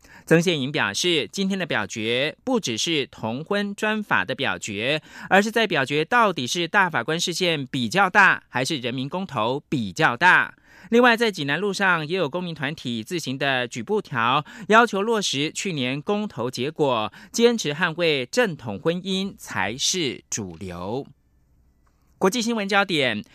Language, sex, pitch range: German, male, 135-200 Hz